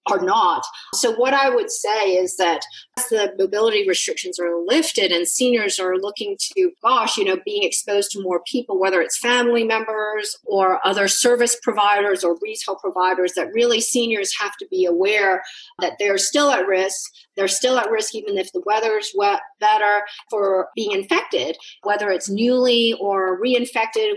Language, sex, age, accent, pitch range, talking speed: English, female, 40-59, American, 190-260 Hz, 170 wpm